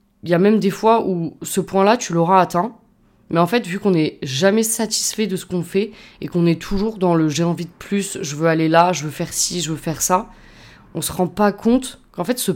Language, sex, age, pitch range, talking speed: French, female, 20-39, 160-195 Hz, 270 wpm